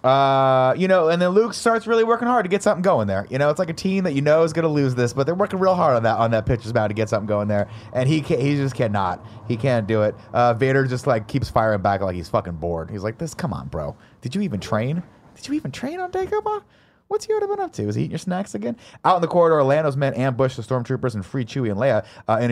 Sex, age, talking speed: male, 30-49, 290 wpm